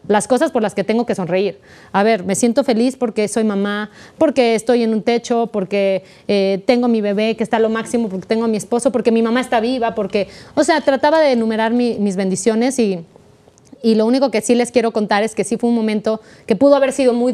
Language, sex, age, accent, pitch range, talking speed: Spanish, female, 20-39, Mexican, 205-245 Hz, 240 wpm